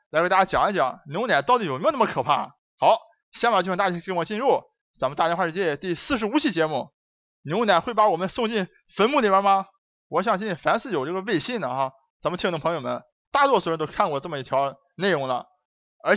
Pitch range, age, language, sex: 165-225 Hz, 20-39, Chinese, male